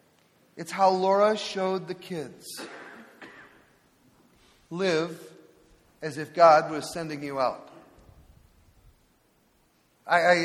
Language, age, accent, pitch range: English, 40-59, American, 165-205 Hz